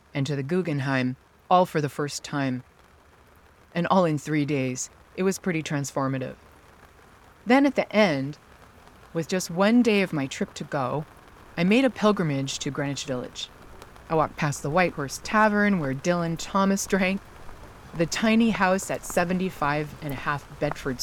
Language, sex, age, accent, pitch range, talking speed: English, female, 30-49, American, 135-180 Hz, 165 wpm